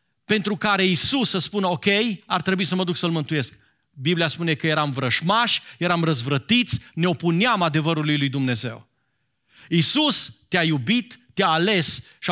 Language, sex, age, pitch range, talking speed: Romanian, male, 40-59, 155-220 Hz, 150 wpm